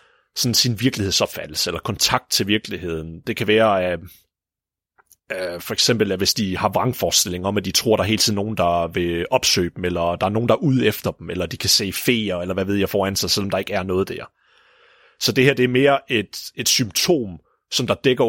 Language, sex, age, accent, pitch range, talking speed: Danish, male, 30-49, native, 95-120 Hz, 230 wpm